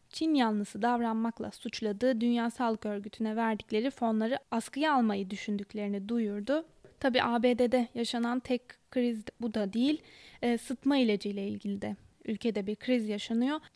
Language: Turkish